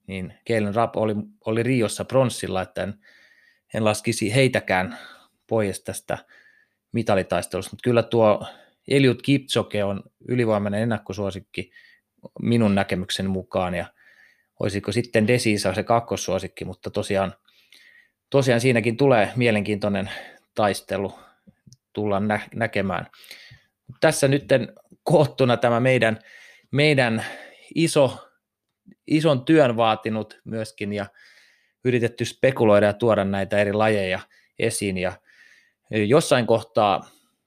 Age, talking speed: 30-49, 105 wpm